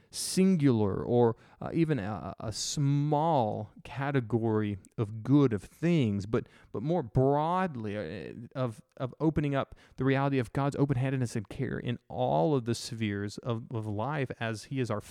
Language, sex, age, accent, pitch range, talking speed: English, male, 30-49, American, 110-140 Hz, 155 wpm